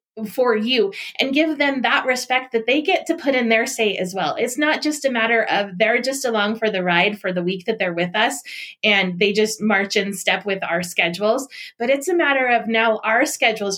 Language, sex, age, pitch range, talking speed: English, female, 20-39, 210-270 Hz, 230 wpm